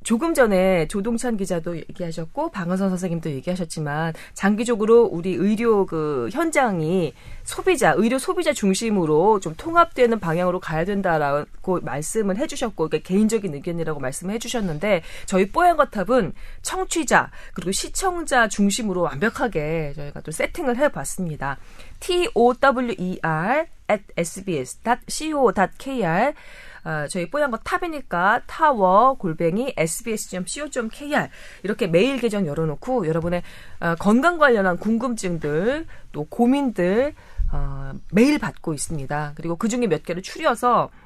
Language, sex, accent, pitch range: Korean, female, native, 165-245 Hz